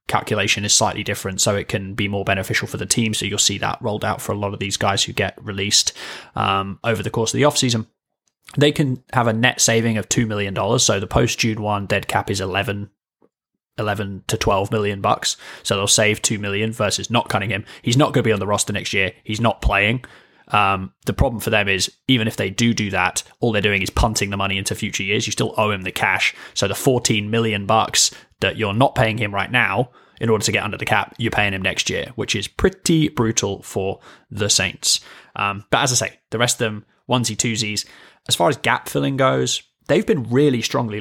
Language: English